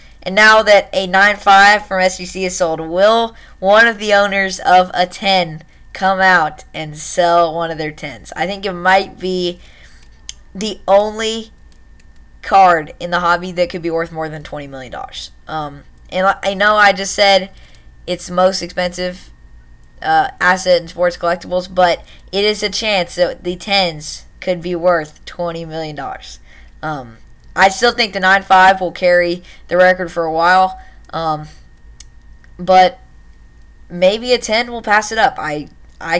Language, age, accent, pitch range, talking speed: English, 20-39, American, 155-195 Hz, 160 wpm